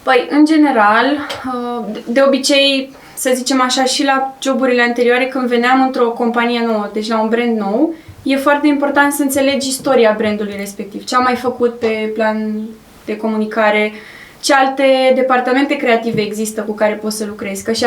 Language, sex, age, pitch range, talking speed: Romanian, female, 20-39, 220-265 Hz, 170 wpm